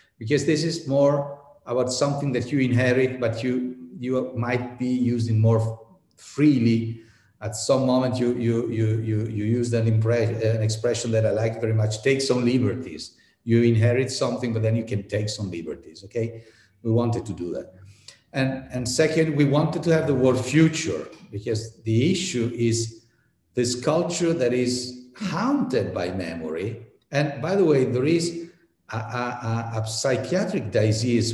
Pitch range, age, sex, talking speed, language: 110-135 Hz, 50-69, male, 165 wpm, Italian